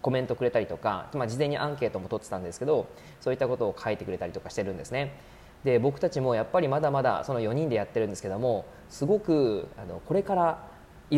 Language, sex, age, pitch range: Japanese, male, 20-39, 105-160 Hz